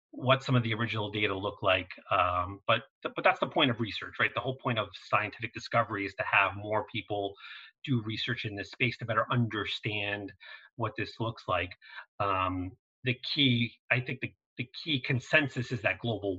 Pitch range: 105-125 Hz